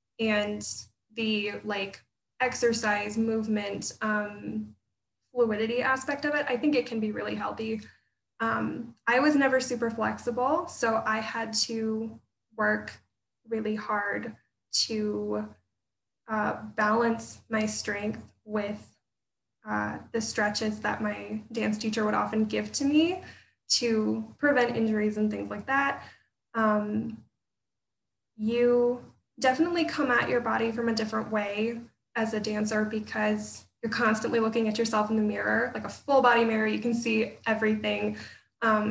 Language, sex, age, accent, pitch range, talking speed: English, female, 10-29, American, 210-240 Hz, 135 wpm